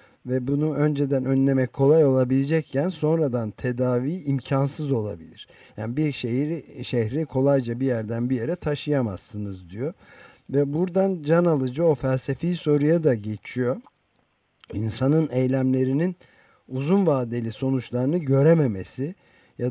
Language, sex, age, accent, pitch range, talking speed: Turkish, male, 50-69, native, 115-150 Hz, 115 wpm